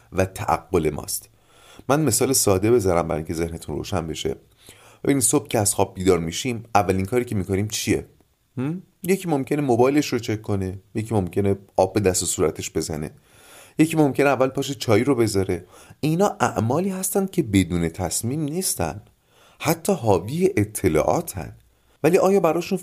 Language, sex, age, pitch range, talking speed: Persian, male, 30-49, 100-150 Hz, 155 wpm